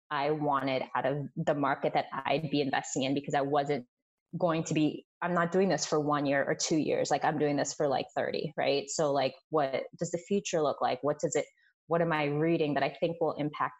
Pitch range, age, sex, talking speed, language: 145-165 Hz, 20-39, female, 240 wpm, English